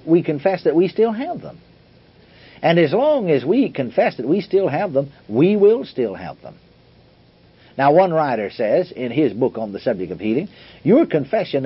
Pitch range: 120-180 Hz